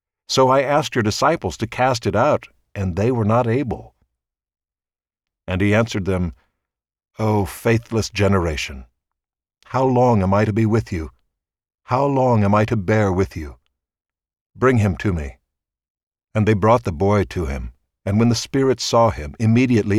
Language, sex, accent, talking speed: English, male, American, 165 wpm